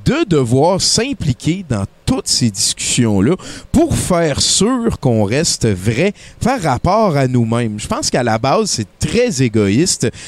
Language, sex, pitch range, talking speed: French, male, 115-155 Hz, 145 wpm